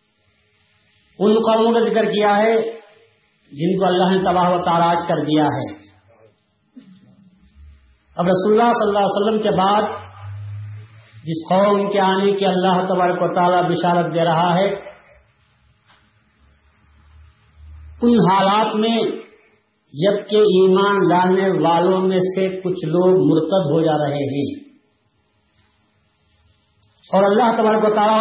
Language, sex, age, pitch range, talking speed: Urdu, male, 50-69, 150-200 Hz, 120 wpm